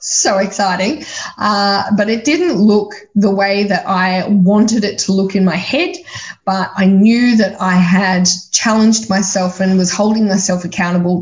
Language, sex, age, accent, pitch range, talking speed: English, female, 20-39, Australian, 185-225 Hz, 165 wpm